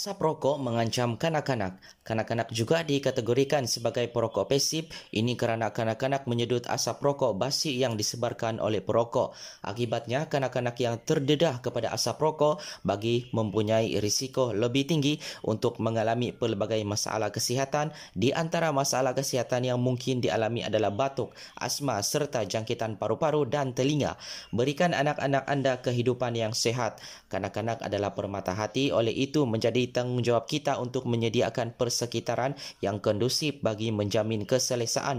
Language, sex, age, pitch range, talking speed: Malay, male, 20-39, 110-135 Hz, 130 wpm